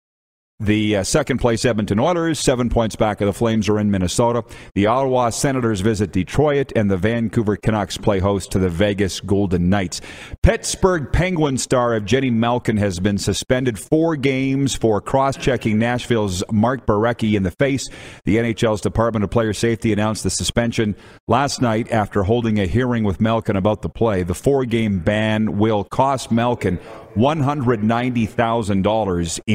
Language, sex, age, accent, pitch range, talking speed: English, male, 40-59, American, 105-125 Hz, 150 wpm